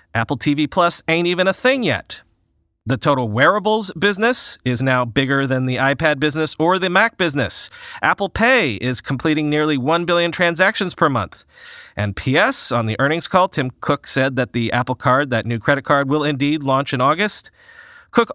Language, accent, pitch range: English, American, 125-185 Hz